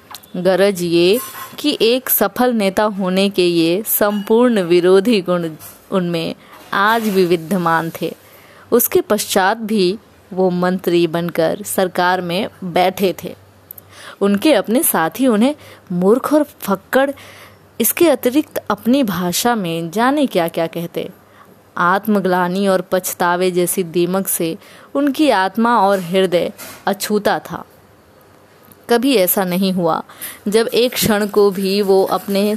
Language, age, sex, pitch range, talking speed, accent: Hindi, 20-39, female, 175-220 Hz, 125 wpm, native